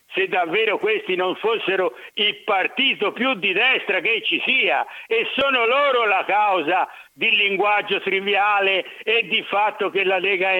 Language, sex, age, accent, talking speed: Italian, male, 60-79, native, 160 wpm